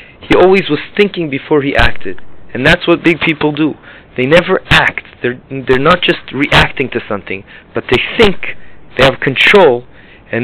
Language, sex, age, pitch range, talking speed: English, male, 30-49, 125-160 Hz, 170 wpm